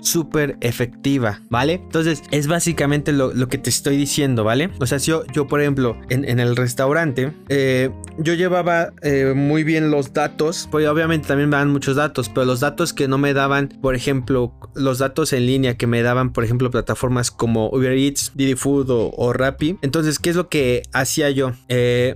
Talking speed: 200 wpm